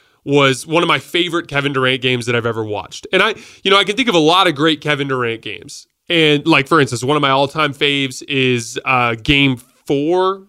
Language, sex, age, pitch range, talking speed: English, male, 20-39, 135-170 Hz, 235 wpm